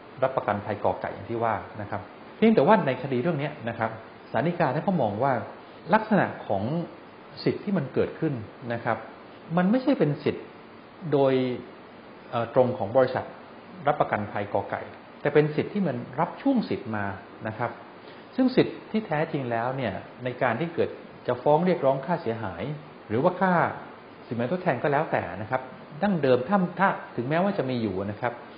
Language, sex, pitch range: English, male, 110-160 Hz